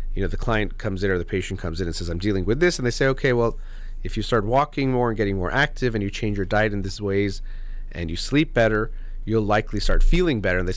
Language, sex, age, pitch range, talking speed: English, male, 30-49, 90-115 Hz, 280 wpm